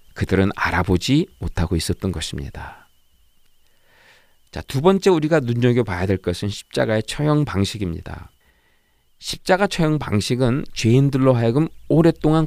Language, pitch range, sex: Korean, 90-145 Hz, male